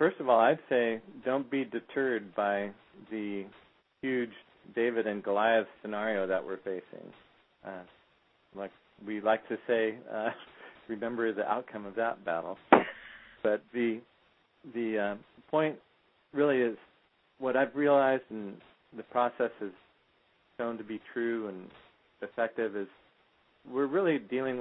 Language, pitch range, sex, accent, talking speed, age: English, 100-120 Hz, male, American, 135 wpm, 40-59